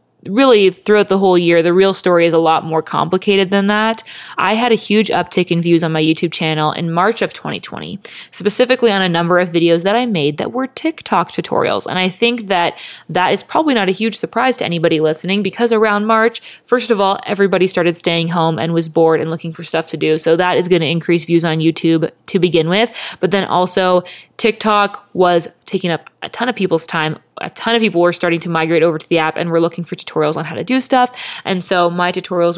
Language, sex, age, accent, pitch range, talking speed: English, female, 20-39, American, 170-200 Hz, 230 wpm